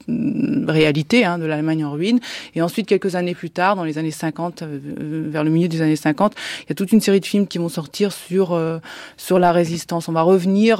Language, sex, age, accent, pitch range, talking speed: French, female, 20-39, French, 155-185 Hz, 235 wpm